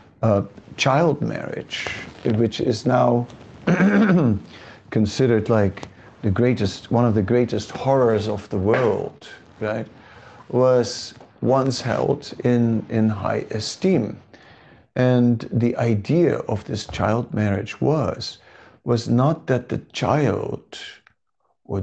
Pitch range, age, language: 105-130 Hz, 60-79, English